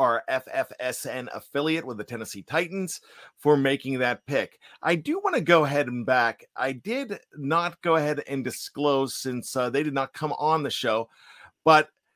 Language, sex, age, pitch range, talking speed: English, male, 50-69, 135-165 Hz, 180 wpm